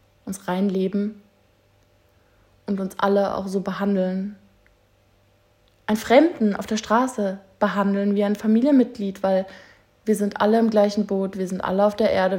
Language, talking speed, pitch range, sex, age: German, 145 wpm, 180-205 Hz, female, 20-39